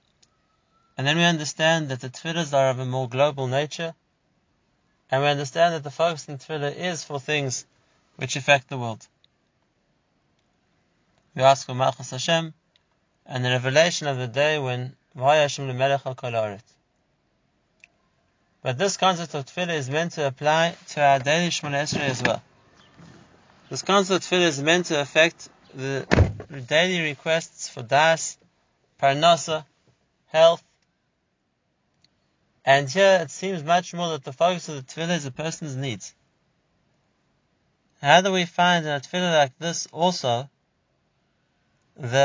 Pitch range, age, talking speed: 135-165 Hz, 20-39, 140 wpm